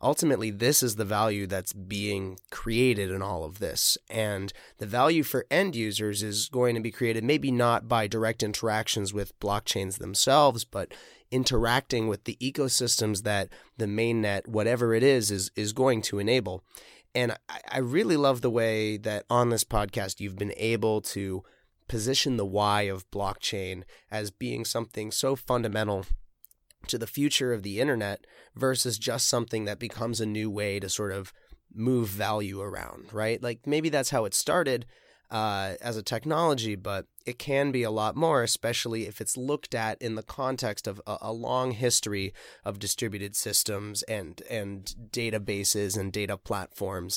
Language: English